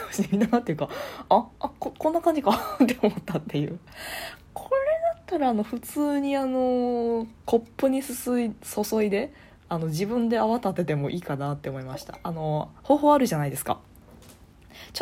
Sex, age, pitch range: female, 20-39, 170-265 Hz